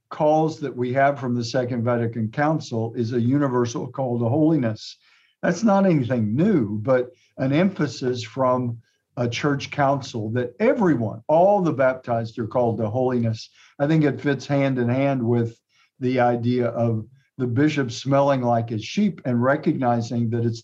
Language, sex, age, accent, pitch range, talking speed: English, male, 50-69, American, 115-140 Hz, 155 wpm